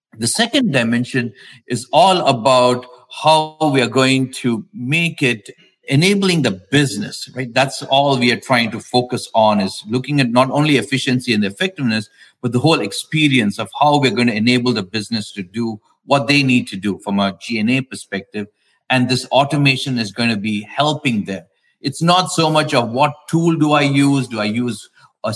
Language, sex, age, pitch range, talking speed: English, male, 50-69, 115-145 Hz, 185 wpm